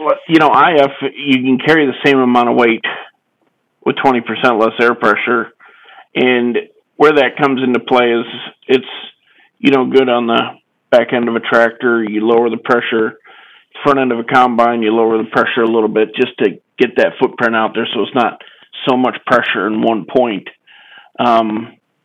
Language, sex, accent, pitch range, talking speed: English, male, American, 110-130 Hz, 185 wpm